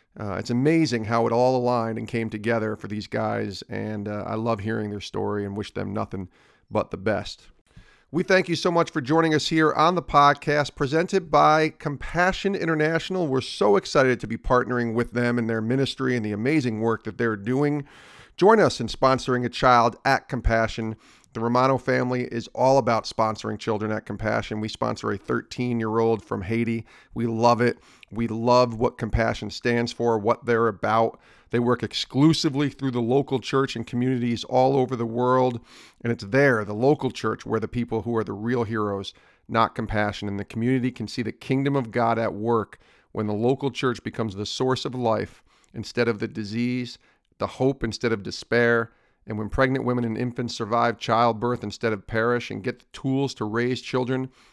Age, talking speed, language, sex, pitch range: 40-59, 190 wpm, English, male, 110-130 Hz